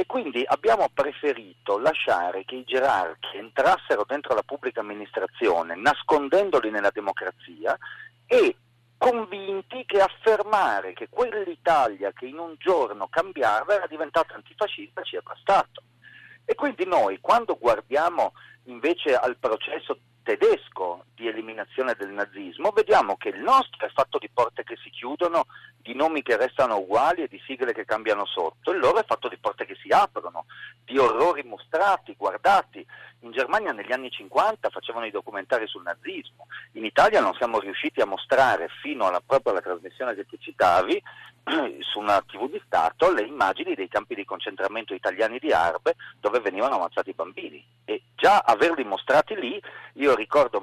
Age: 40-59